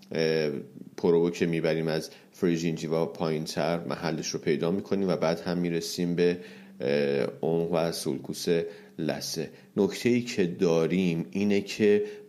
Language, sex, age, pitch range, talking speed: Persian, male, 40-59, 80-90 Hz, 125 wpm